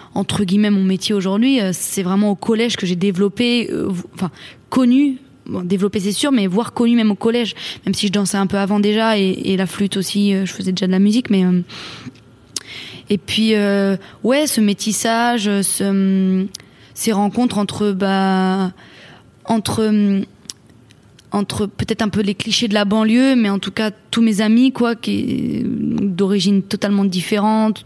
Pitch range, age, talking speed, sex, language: 195-225 Hz, 20-39, 170 wpm, female, French